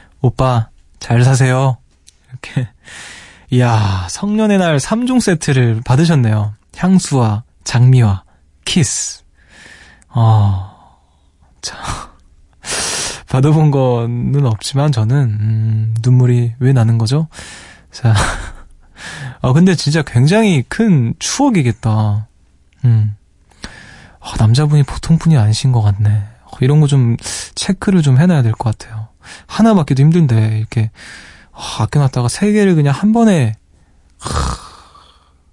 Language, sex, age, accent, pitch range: Korean, male, 20-39, native, 110-150 Hz